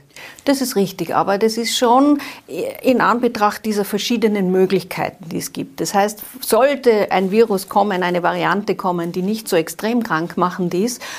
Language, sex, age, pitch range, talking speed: German, female, 40-59, 175-220 Hz, 160 wpm